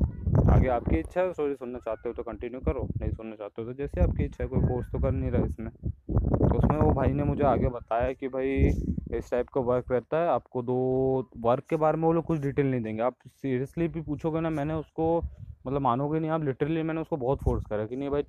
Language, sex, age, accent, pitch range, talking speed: Hindi, male, 20-39, native, 115-140 Hz, 240 wpm